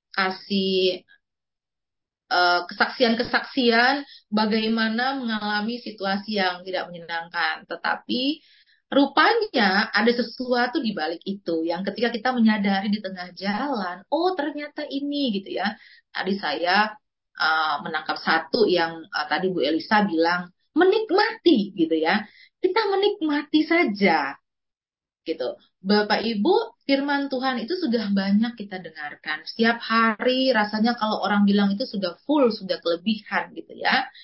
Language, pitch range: Indonesian, 195-265 Hz